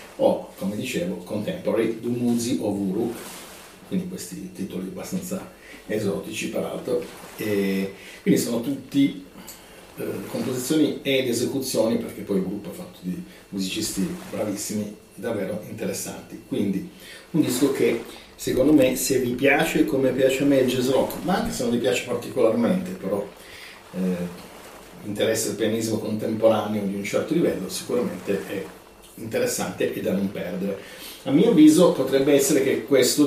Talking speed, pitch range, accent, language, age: 145 wpm, 95-130 Hz, native, Italian, 40-59